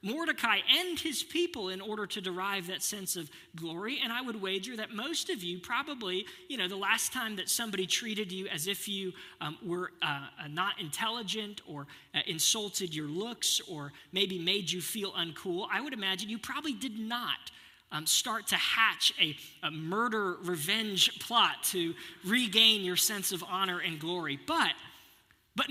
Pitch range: 175-230 Hz